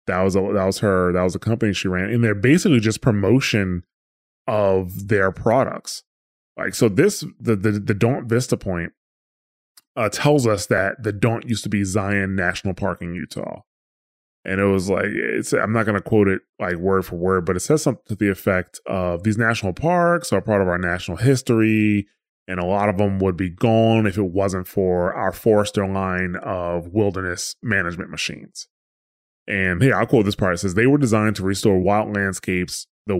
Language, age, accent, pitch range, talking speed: English, 20-39, American, 95-115 Hz, 200 wpm